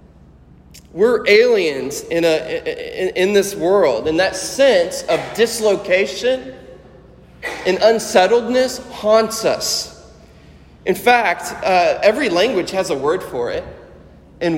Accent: American